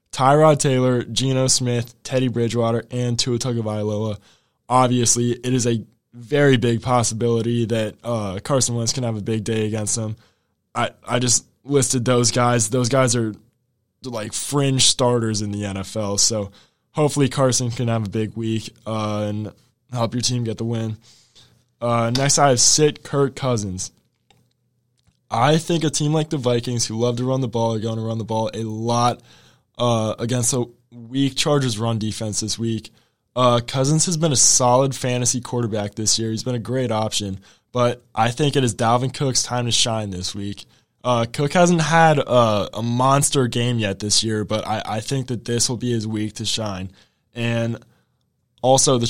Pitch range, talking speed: 110-130 Hz, 180 wpm